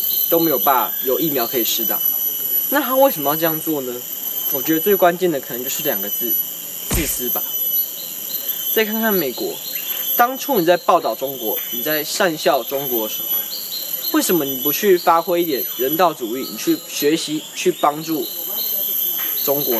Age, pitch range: 20-39, 145-195 Hz